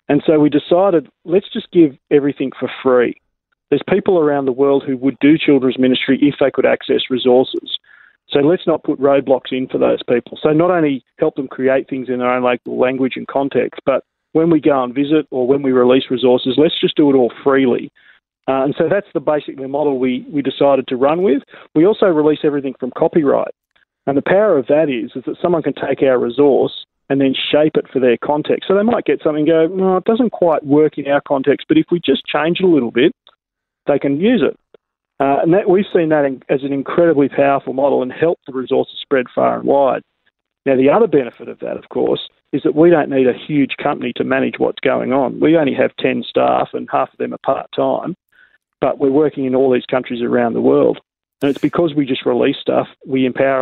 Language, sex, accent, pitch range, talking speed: English, male, Australian, 130-155 Hz, 225 wpm